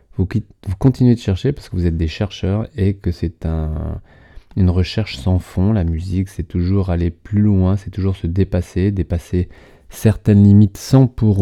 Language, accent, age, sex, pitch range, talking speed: French, French, 30-49, male, 85-105 Hz, 175 wpm